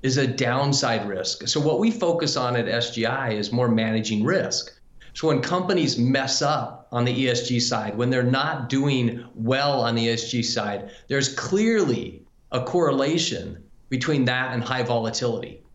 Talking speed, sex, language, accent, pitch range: 160 wpm, male, English, American, 120-150 Hz